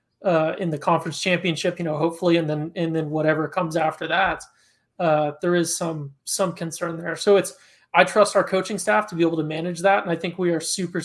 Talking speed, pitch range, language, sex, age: 230 wpm, 160-185 Hz, English, male, 20-39